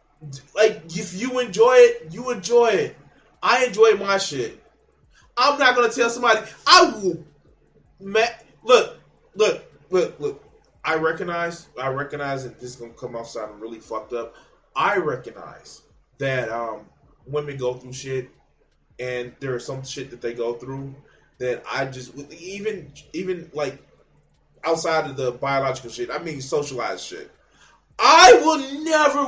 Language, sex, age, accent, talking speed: English, male, 20-39, American, 150 wpm